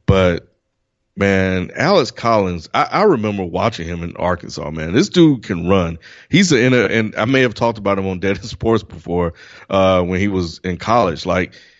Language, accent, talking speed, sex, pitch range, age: English, American, 190 wpm, male, 85-110 Hz, 30-49